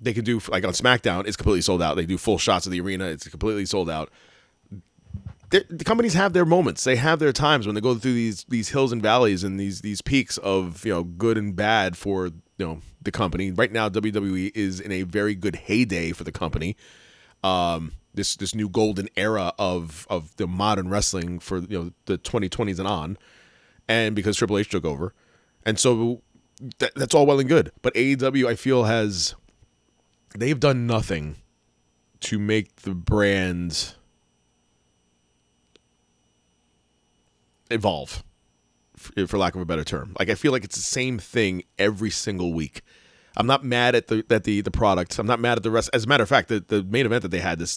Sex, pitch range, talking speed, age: male, 85-115 Hz, 195 wpm, 30-49